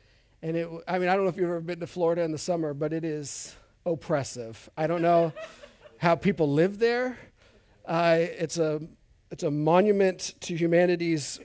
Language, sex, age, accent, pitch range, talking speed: English, male, 40-59, American, 150-190 Hz, 185 wpm